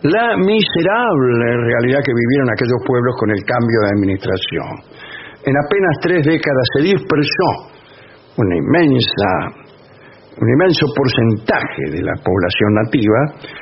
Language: English